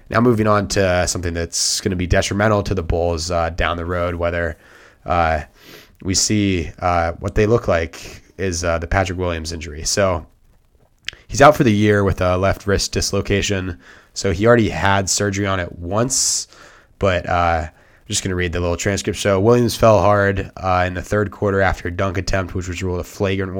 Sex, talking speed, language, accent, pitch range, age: male, 195 wpm, English, American, 90-105 Hz, 20-39